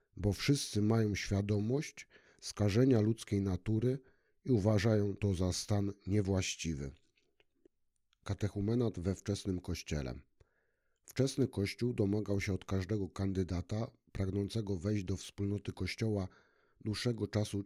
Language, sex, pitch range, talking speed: Polish, male, 95-110 Hz, 105 wpm